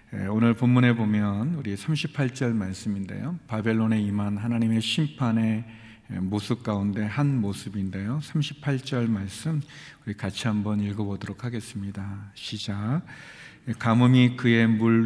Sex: male